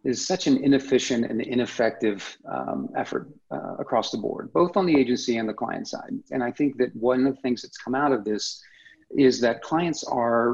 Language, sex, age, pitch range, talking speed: English, male, 40-59, 110-130 Hz, 210 wpm